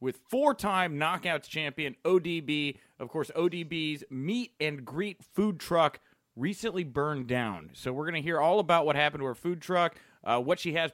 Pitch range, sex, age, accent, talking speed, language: 140-185 Hz, male, 30-49, American, 170 wpm, English